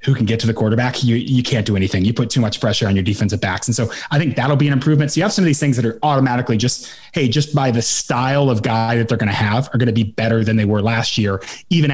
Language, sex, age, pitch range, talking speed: English, male, 30-49, 110-135 Hz, 300 wpm